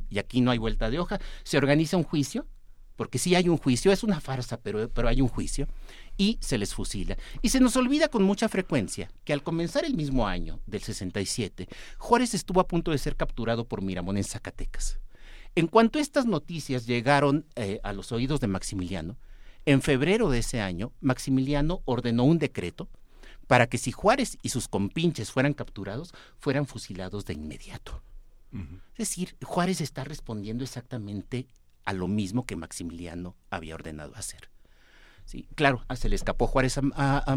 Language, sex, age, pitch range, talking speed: Spanish, male, 50-69, 110-165 Hz, 180 wpm